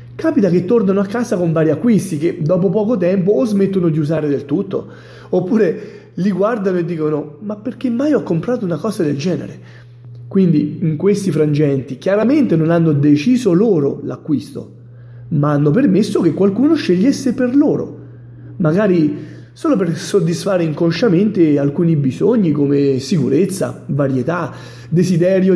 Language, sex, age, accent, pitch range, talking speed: Italian, male, 30-49, native, 145-200 Hz, 145 wpm